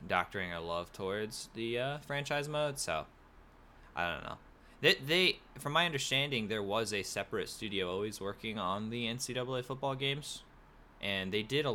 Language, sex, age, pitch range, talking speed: English, male, 20-39, 80-120 Hz, 170 wpm